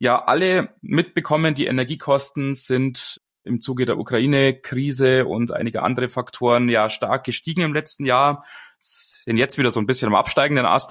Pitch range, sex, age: 125-155 Hz, male, 20-39